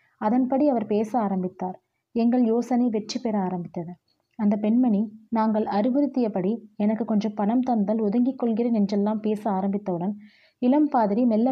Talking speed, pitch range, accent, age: 130 wpm, 210-250 Hz, native, 30-49